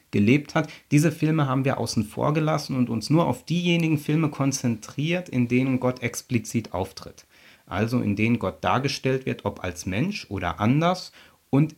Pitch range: 105-135 Hz